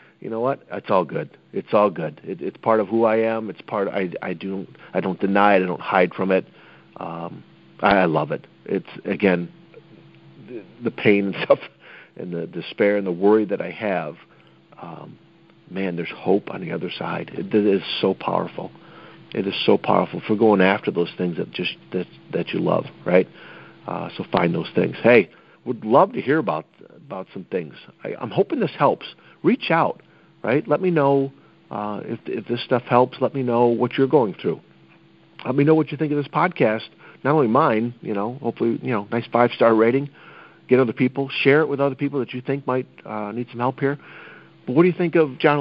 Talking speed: 215 wpm